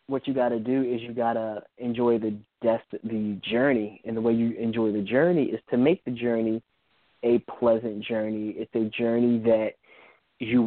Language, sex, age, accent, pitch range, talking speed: English, male, 20-39, American, 110-125 Hz, 190 wpm